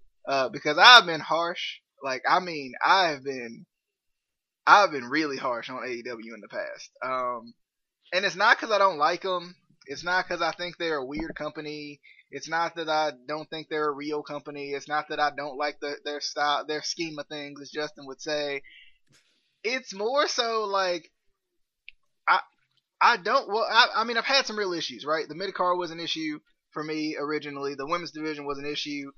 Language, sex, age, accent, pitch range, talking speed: English, male, 20-39, American, 145-190 Hz, 195 wpm